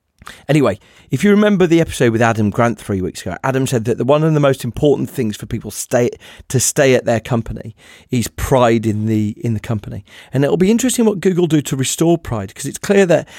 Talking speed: 230 wpm